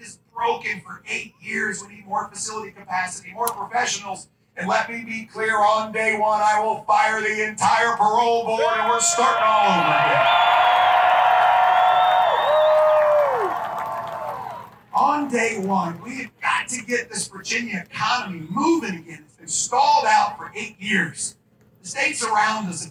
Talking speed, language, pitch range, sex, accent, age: 150 wpm, English, 185-245 Hz, male, American, 40-59